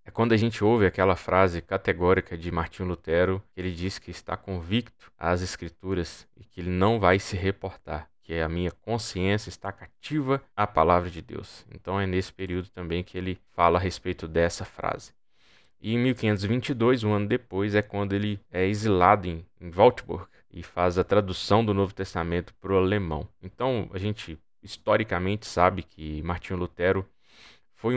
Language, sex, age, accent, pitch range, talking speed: Portuguese, male, 20-39, Brazilian, 90-105 Hz, 175 wpm